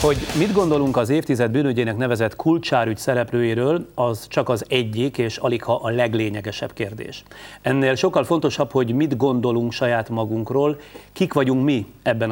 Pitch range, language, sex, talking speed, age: 115-140 Hz, Hungarian, male, 145 wpm, 30-49